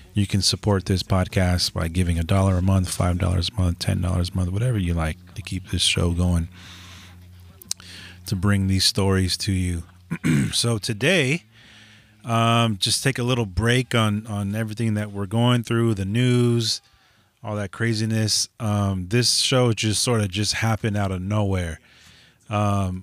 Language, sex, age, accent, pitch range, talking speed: English, male, 30-49, American, 95-115 Hz, 170 wpm